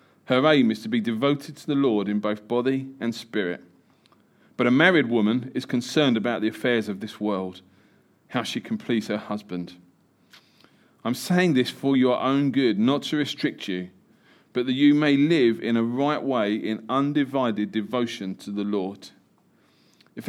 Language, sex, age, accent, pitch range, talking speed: English, male, 40-59, British, 110-155 Hz, 175 wpm